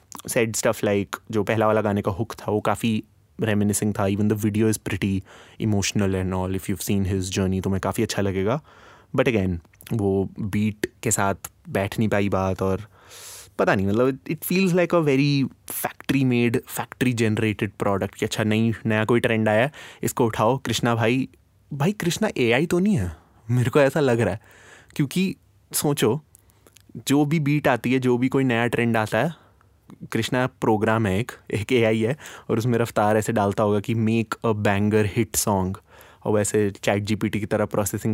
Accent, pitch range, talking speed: Indian, 100-120 Hz, 160 wpm